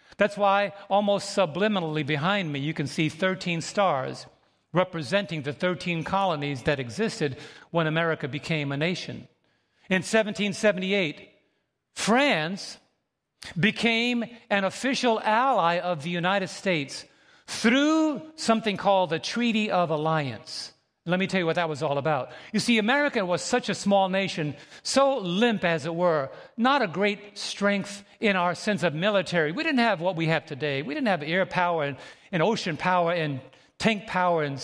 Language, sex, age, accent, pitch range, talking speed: English, male, 50-69, American, 160-205 Hz, 160 wpm